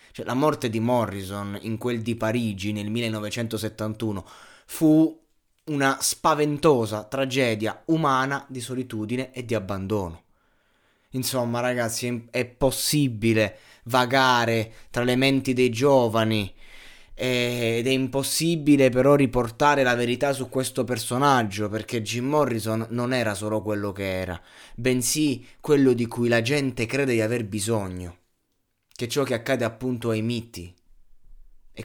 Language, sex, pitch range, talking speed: Italian, male, 110-135 Hz, 130 wpm